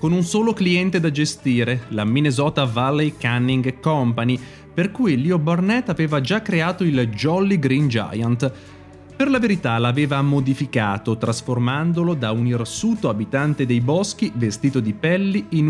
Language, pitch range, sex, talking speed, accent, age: Italian, 115-165 Hz, male, 145 wpm, native, 30-49